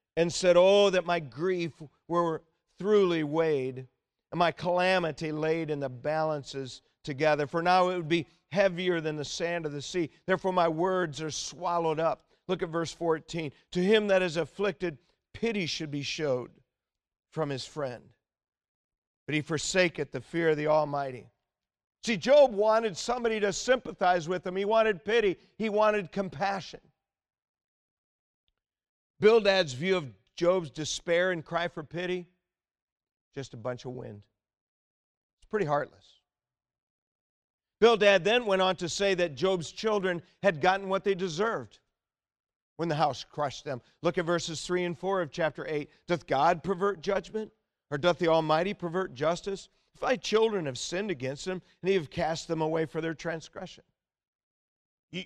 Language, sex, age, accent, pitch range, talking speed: English, male, 50-69, American, 155-195 Hz, 155 wpm